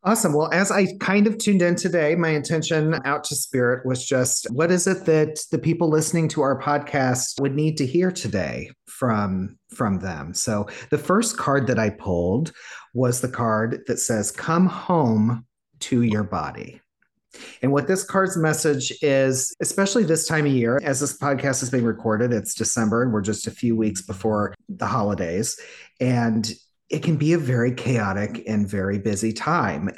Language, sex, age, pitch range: English, male, 40-59, 110-150 Hz